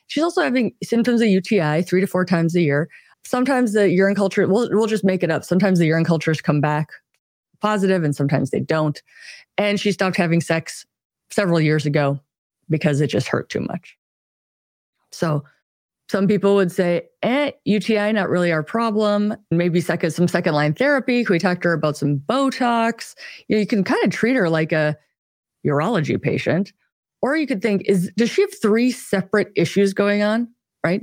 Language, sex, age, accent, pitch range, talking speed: English, female, 20-39, American, 160-215 Hz, 185 wpm